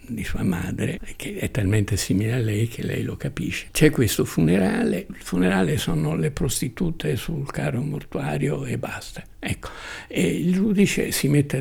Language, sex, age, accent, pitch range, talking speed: Italian, male, 60-79, native, 115-155 Hz, 165 wpm